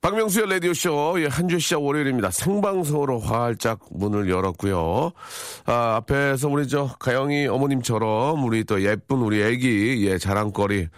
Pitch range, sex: 100-140 Hz, male